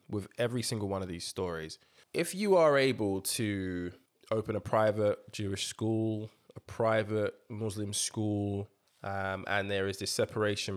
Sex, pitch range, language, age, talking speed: male, 95-125 Hz, English, 20-39, 150 wpm